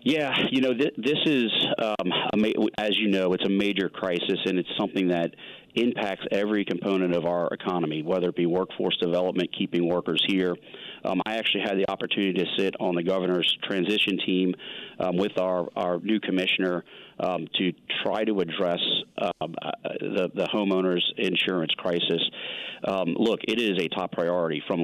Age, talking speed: 40-59, 175 wpm